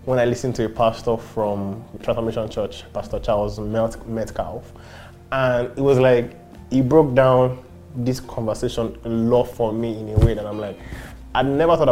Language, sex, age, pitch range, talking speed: English, male, 20-39, 110-135 Hz, 170 wpm